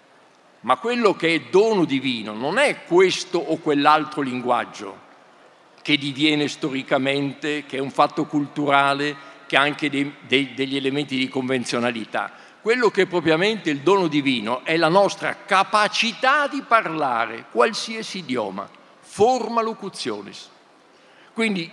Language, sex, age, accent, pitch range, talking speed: Italian, male, 50-69, native, 140-205 Hz, 125 wpm